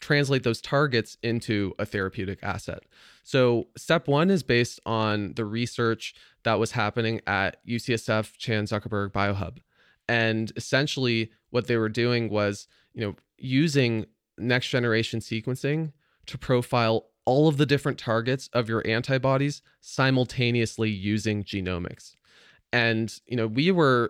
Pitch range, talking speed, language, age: 110-130 Hz, 135 wpm, English, 20-39